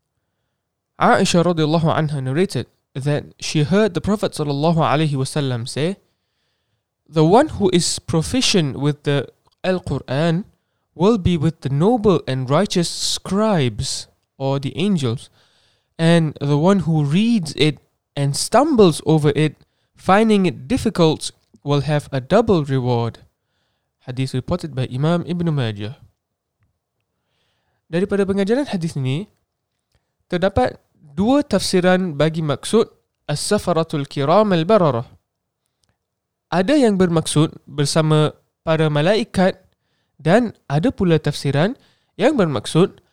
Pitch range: 140-190 Hz